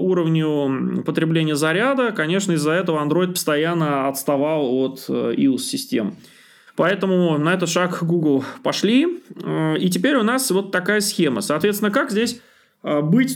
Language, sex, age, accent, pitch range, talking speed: Russian, male, 20-39, native, 155-210 Hz, 125 wpm